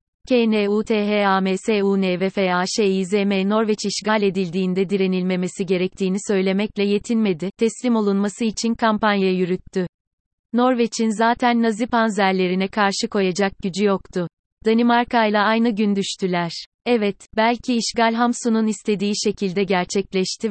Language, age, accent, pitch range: Turkish, 30-49, native, 190-225 Hz